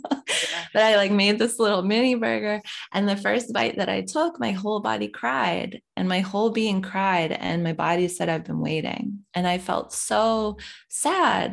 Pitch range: 170-220 Hz